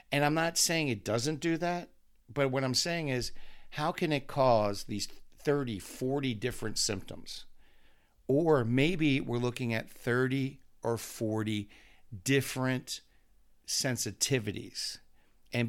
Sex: male